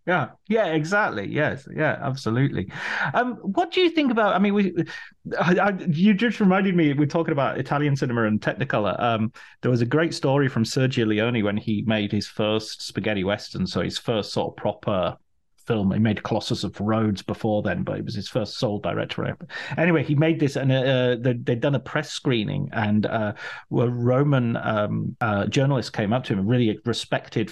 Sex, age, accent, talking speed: male, 30-49, British, 190 wpm